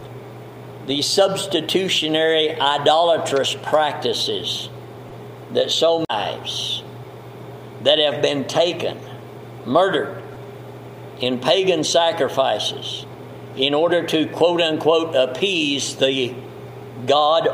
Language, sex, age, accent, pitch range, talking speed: English, male, 60-79, American, 135-170 Hz, 80 wpm